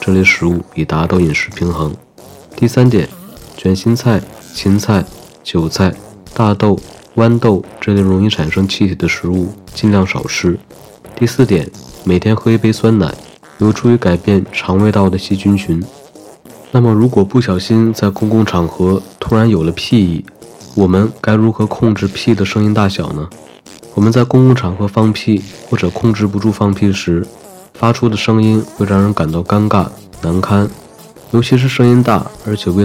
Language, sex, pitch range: Chinese, male, 95-110 Hz